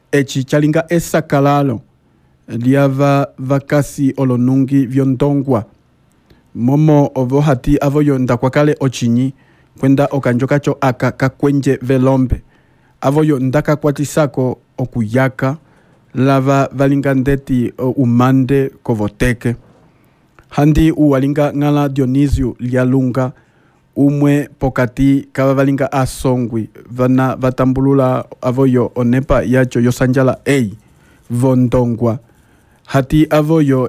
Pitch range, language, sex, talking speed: 130-145 Hz, Portuguese, male, 75 wpm